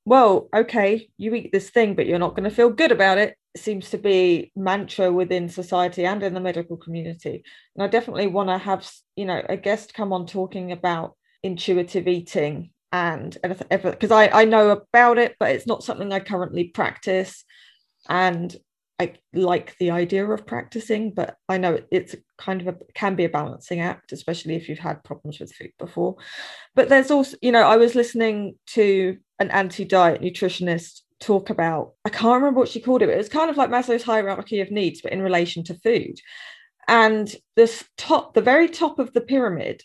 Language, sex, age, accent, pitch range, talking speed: English, female, 20-39, British, 180-220 Hz, 195 wpm